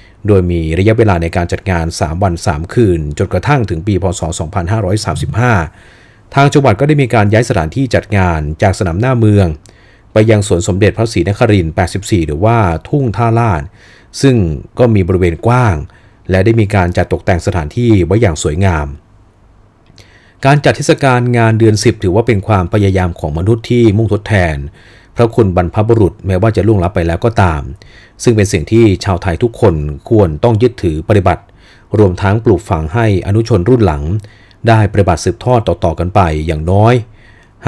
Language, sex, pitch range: Thai, male, 90-115 Hz